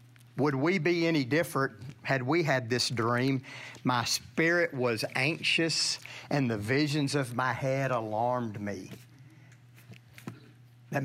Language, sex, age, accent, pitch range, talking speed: English, male, 50-69, American, 120-160 Hz, 125 wpm